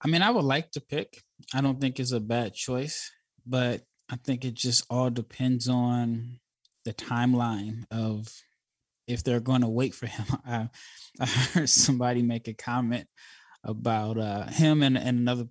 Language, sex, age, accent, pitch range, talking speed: English, male, 20-39, American, 110-130 Hz, 170 wpm